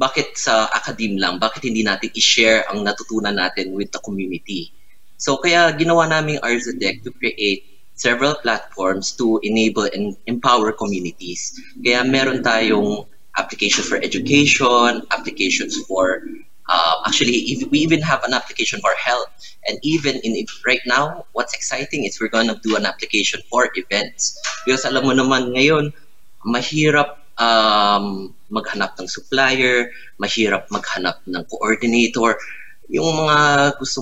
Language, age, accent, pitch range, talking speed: Filipino, 20-39, native, 110-145 Hz, 140 wpm